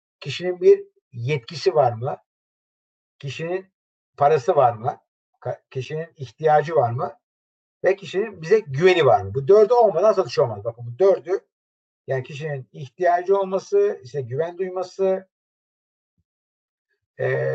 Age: 60-79